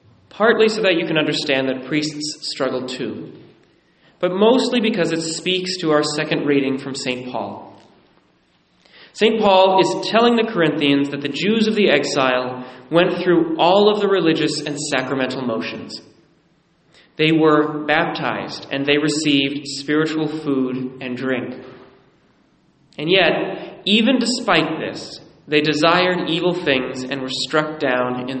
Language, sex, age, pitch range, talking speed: English, male, 30-49, 130-175 Hz, 140 wpm